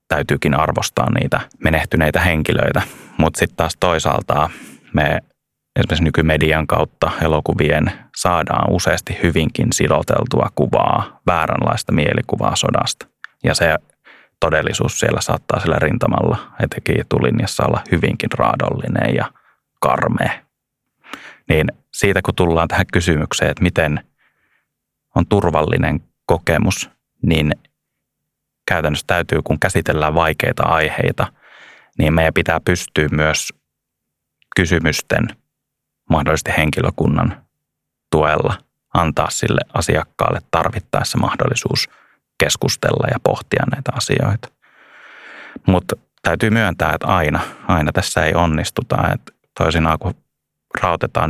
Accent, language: native, Finnish